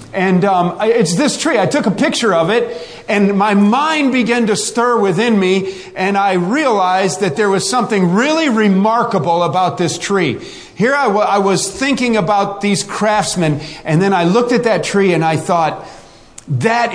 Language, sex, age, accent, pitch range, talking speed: English, male, 40-59, American, 190-250 Hz, 180 wpm